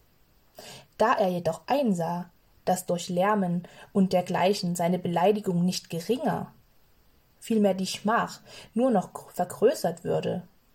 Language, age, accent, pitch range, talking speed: German, 20-39, German, 175-225 Hz, 110 wpm